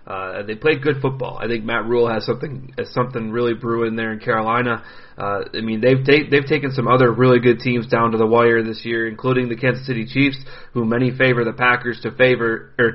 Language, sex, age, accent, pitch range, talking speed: English, male, 30-49, American, 115-130 Hz, 225 wpm